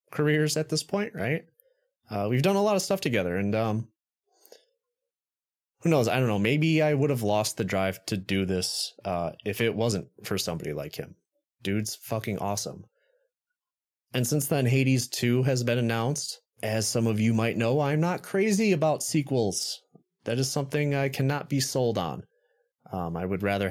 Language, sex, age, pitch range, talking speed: English, male, 20-39, 105-155 Hz, 180 wpm